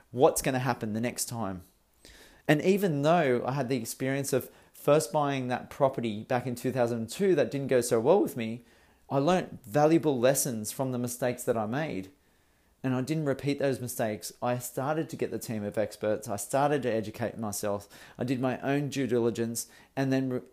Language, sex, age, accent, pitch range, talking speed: English, male, 40-59, Australian, 115-140 Hz, 195 wpm